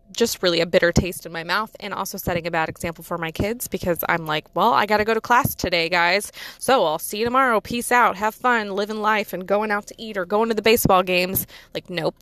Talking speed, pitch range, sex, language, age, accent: 260 wpm, 180-240 Hz, female, English, 20-39, American